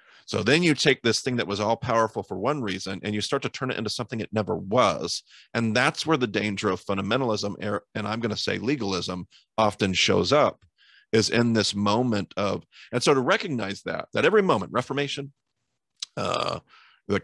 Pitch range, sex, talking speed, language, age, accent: 105-135 Hz, male, 195 wpm, English, 40-59, American